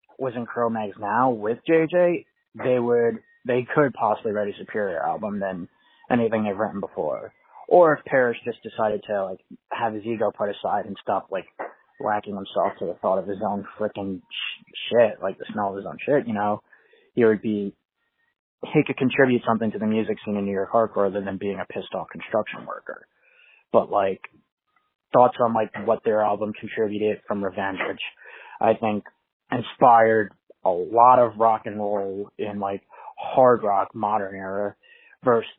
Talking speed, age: 175 wpm, 20-39